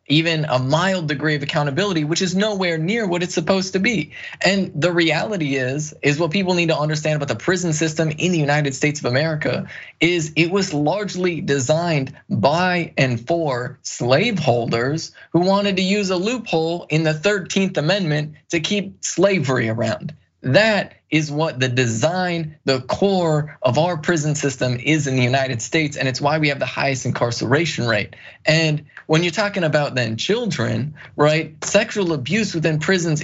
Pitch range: 140-180 Hz